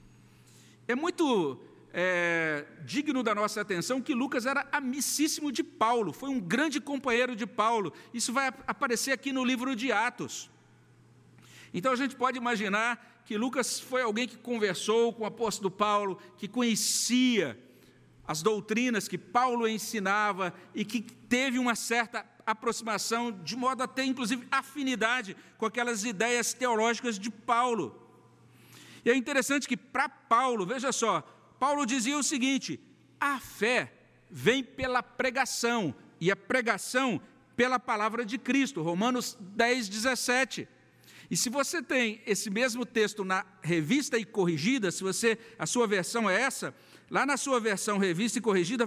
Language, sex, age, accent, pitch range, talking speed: Portuguese, male, 50-69, Brazilian, 205-255 Hz, 145 wpm